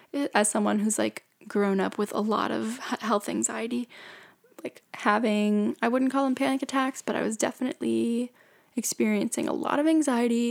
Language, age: English, 10-29